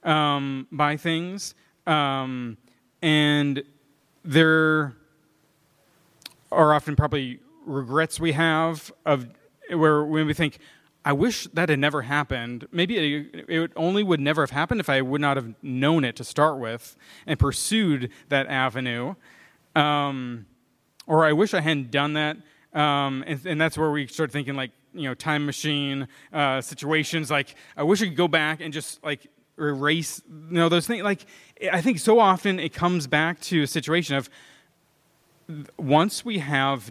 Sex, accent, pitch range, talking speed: male, American, 135-160 Hz, 160 wpm